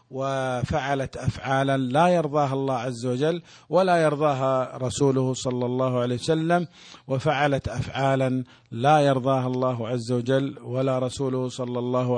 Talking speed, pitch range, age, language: 125 wpm, 125-145 Hz, 50-69, Malay